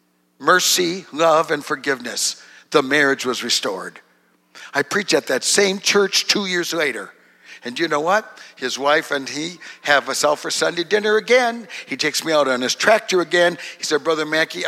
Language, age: English, 60-79